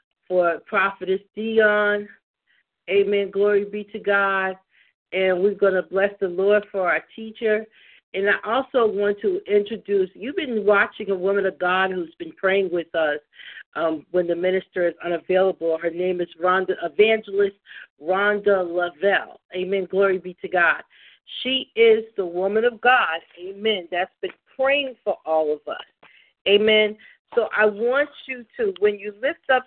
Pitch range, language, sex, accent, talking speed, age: 185-220 Hz, English, female, American, 160 wpm, 50-69